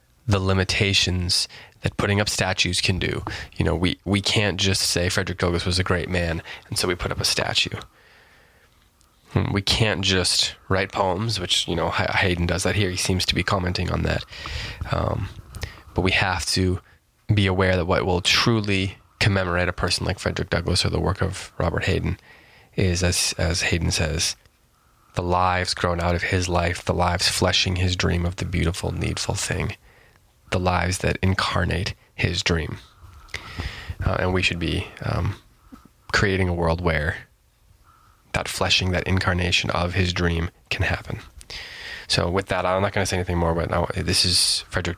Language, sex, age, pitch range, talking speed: English, male, 20-39, 90-100 Hz, 175 wpm